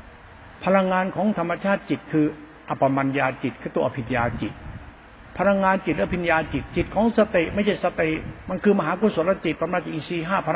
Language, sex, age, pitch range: Thai, male, 60-79, 130-180 Hz